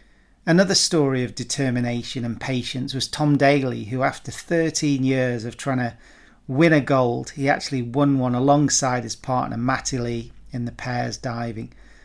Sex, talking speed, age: male, 160 wpm, 40-59